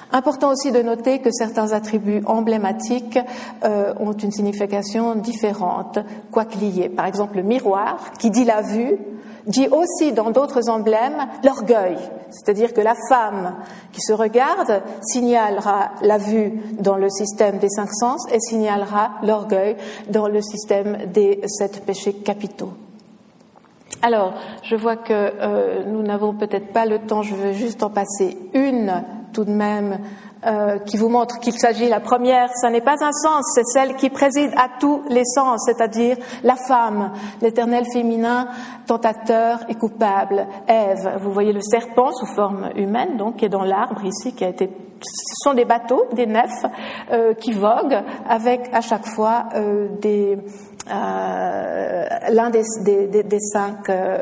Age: 50-69